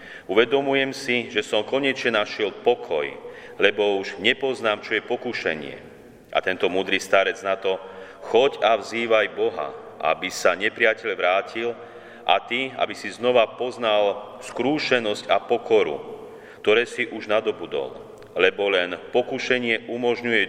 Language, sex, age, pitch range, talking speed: Slovak, male, 40-59, 95-120 Hz, 130 wpm